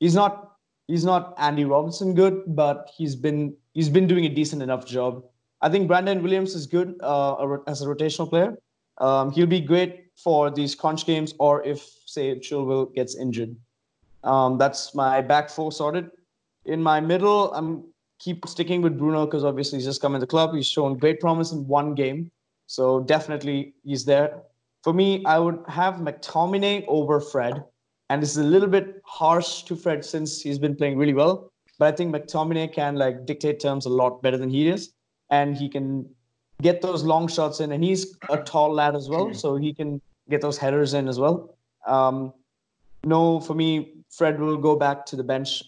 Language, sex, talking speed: English, male, 195 wpm